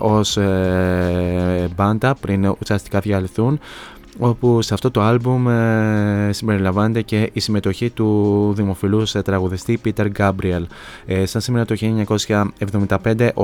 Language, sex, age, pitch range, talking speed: Greek, male, 20-39, 100-115 Hz, 120 wpm